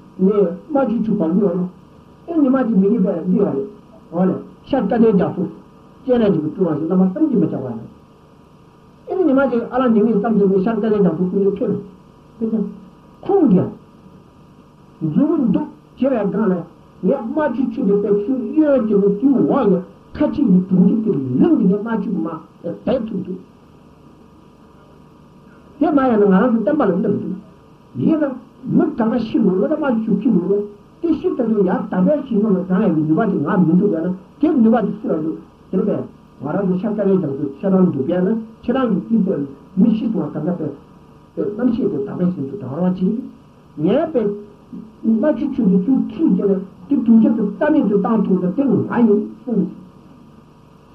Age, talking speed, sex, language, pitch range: 60-79, 40 wpm, male, Italian, 190-250 Hz